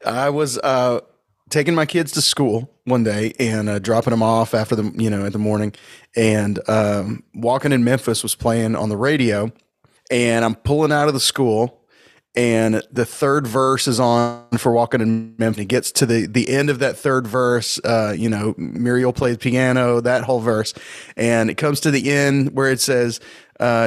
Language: English